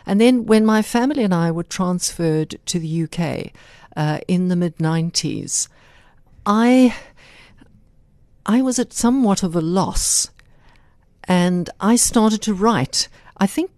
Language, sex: English, female